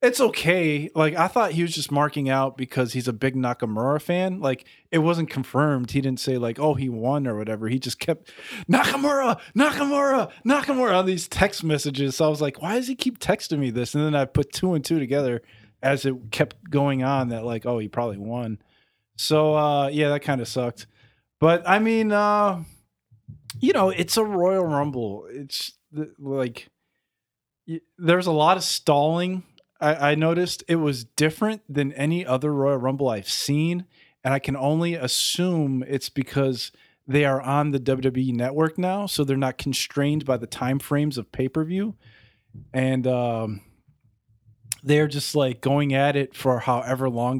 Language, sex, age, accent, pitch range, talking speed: English, male, 20-39, American, 125-160 Hz, 175 wpm